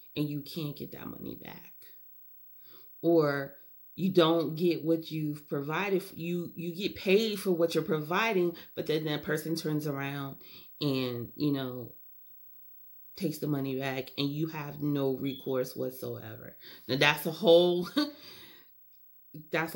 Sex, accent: female, American